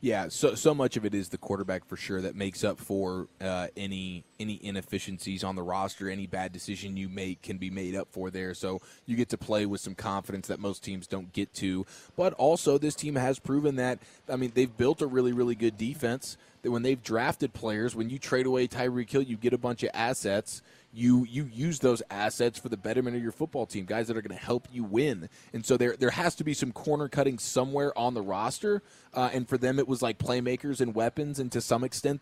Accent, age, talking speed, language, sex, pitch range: American, 20-39, 240 wpm, English, male, 110-135 Hz